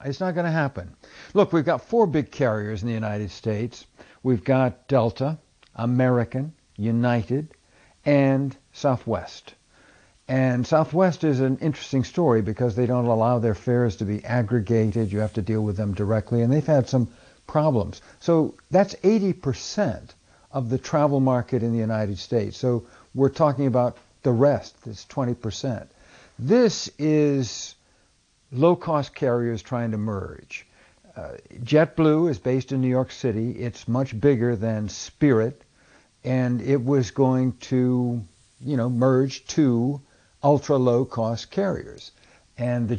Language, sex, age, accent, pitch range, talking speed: English, male, 60-79, American, 115-140 Hz, 140 wpm